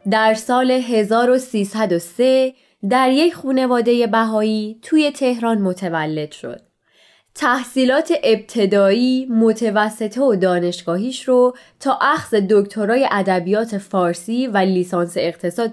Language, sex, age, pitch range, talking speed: Persian, female, 20-39, 195-255 Hz, 95 wpm